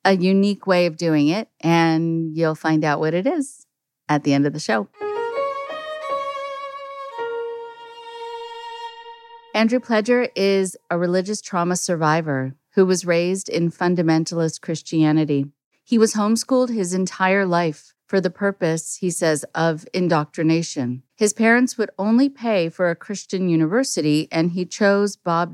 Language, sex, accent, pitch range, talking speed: English, female, American, 160-195 Hz, 135 wpm